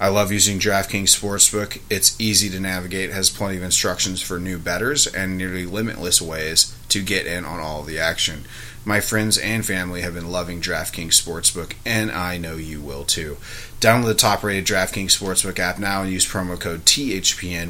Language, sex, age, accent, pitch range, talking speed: English, male, 30-49, American, 85-105 Hz, 185 wpm